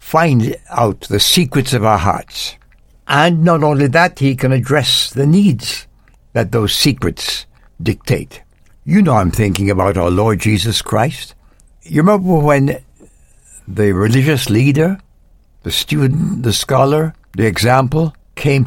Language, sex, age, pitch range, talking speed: English, male, 60-79, 110-150 Hz, 135 wpm